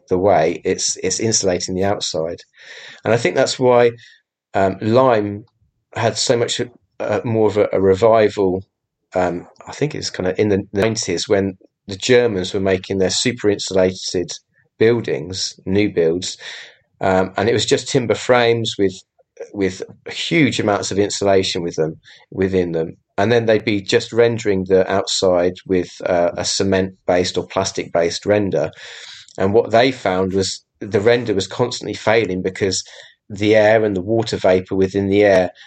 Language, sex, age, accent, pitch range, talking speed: English, male, 30-49, British, 95-110 Hz, 165 wpm